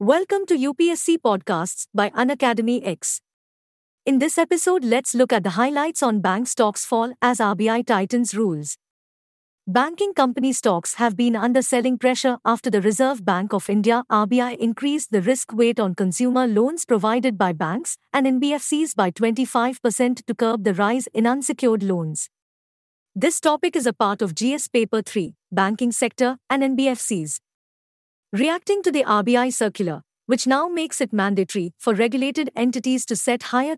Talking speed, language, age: 155 wpm, English, 50-69